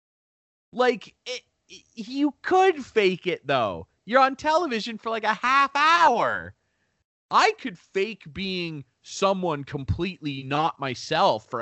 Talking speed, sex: 130 wpm, male